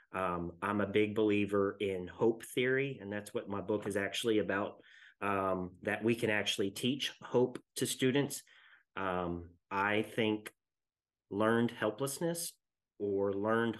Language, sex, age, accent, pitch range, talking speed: English, male, 30-49, American, 95-115 Hz, 140 wpm